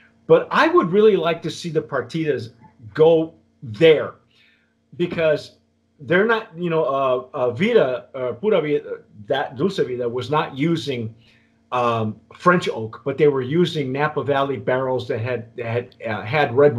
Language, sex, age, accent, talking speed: English, male, 40-59, American, 160 wpm